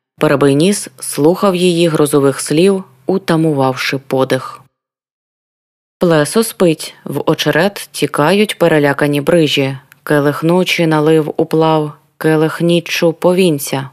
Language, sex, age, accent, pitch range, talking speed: Ukrainian, female, 20-39, native, 150-185 Hz, 95 wpm